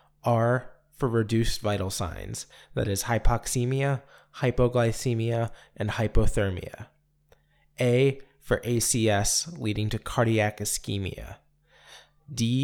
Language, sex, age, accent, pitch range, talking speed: English, male, 20-39, American, 105-130 Hz, 90 wpm